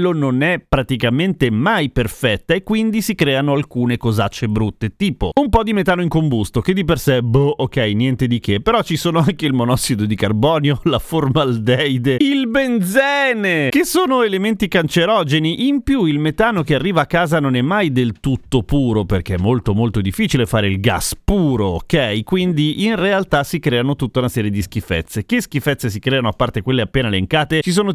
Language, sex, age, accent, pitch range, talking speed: Italian, male, 30-49, native, 125-180 Hz, 190 wpm